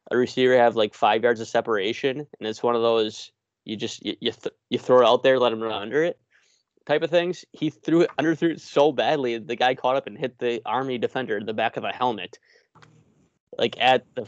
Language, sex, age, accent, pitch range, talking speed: English, male, 20-39, American, 110-130 Hz, 235 wpm